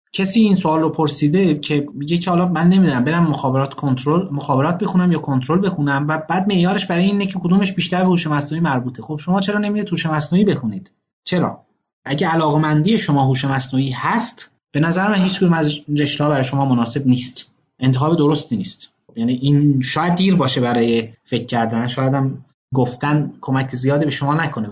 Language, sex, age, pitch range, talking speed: Persian, male, 30-49, 135-180 Hz, 180 wpm